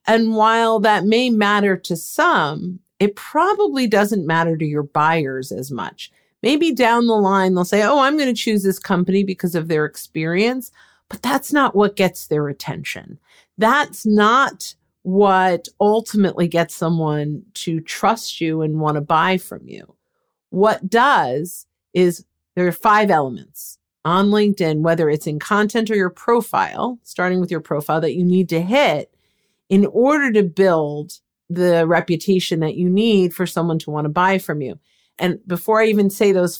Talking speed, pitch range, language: 170 wpm, 165-210 Hz, English